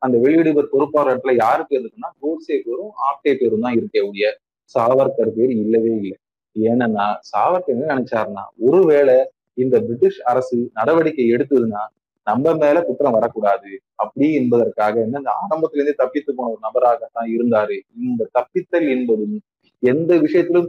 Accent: native